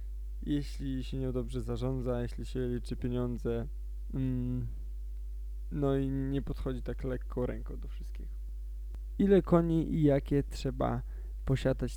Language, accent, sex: Polish, native, male